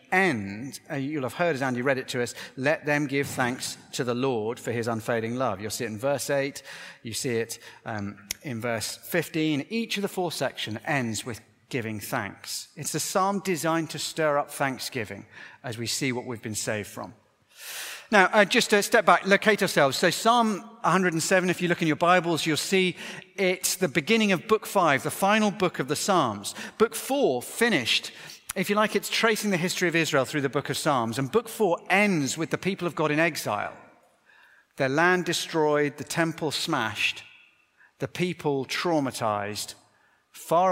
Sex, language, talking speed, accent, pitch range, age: male, English, 190 wpm, British, 130-185 Hz, 40-59